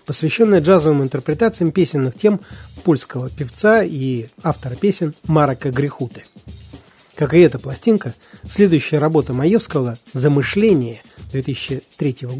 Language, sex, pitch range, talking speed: Russian, male, 130-170 Hz, 100 wpm